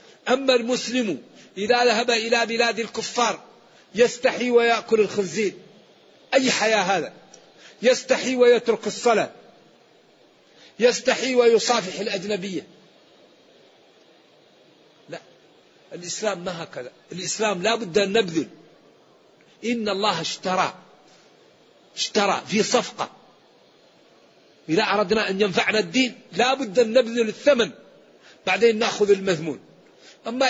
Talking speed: 95 wpm